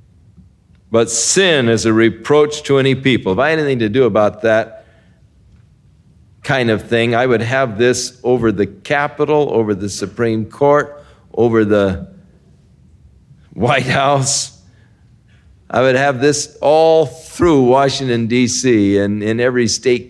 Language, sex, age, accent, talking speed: English, male, 50-69, American, 135 wpm